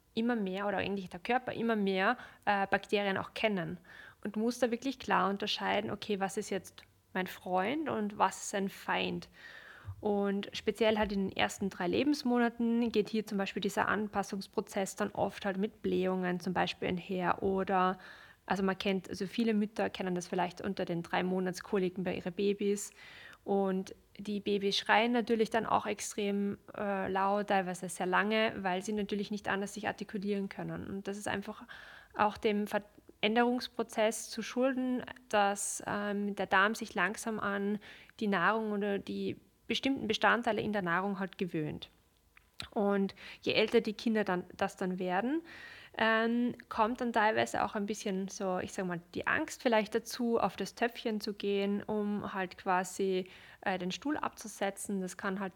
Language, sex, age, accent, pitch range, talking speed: German, female, 20-39, German, 190-220 Hz, 165 wpm